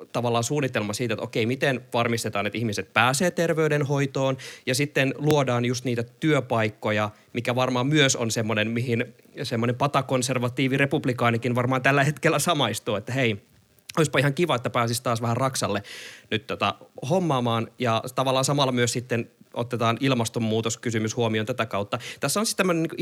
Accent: native